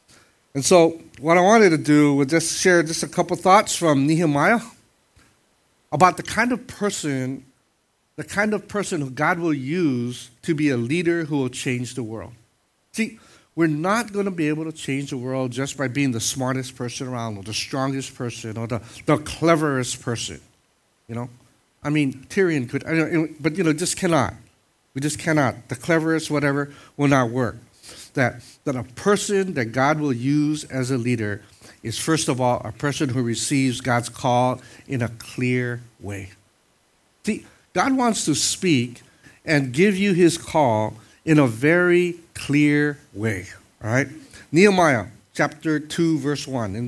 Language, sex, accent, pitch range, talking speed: English, male, American, 125-165 Hz, 170 wpm